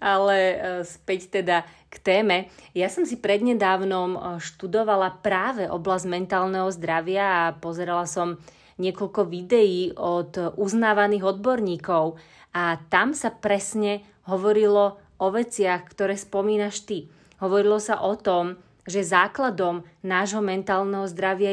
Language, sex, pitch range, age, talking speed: Slovak, female, 185-210 Hz, 30-49, 115 wpm